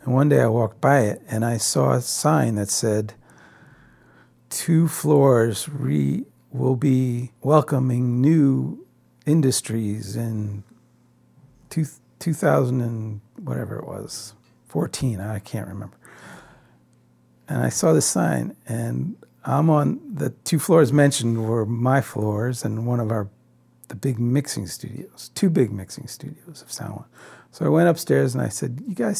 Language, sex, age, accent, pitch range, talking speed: English, male, 50-69, American, 110-140 Hz, 150 wpm